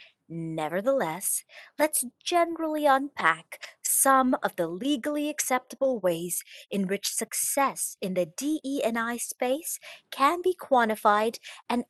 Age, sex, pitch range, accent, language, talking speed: 40-59, female, 195-265 Hz, American, English, 105 wpm